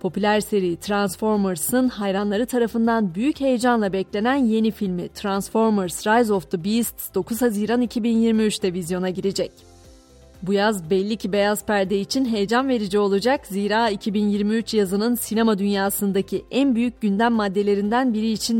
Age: 30-49